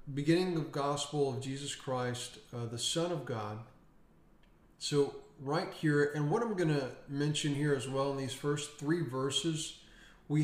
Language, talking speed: English, 160 wpm